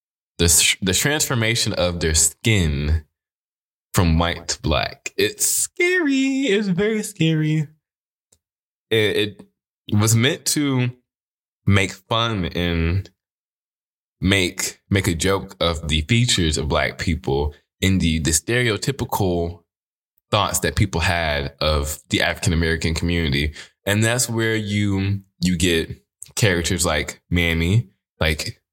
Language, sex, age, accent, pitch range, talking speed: English, male, 20-39, American, 85-105 Hz, 115 wpm